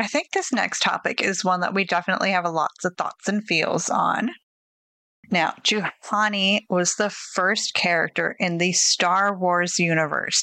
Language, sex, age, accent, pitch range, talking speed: English, female, 30-49, American, 165-210 Hz, 165 wpm